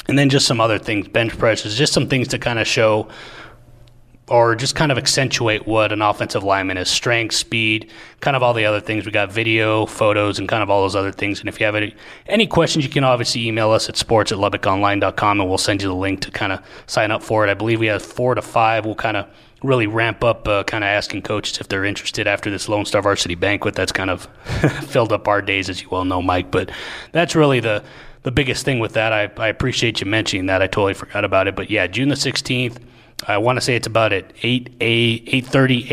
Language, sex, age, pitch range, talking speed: English, male, 30-49, 100-120 Hz, 245 wpm